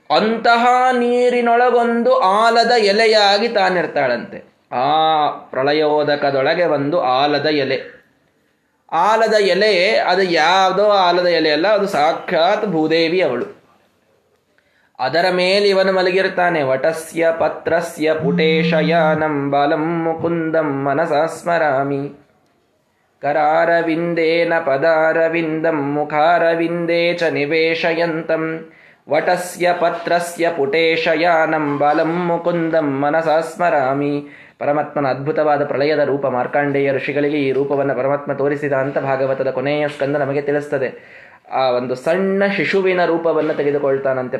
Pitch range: 145-175 Hz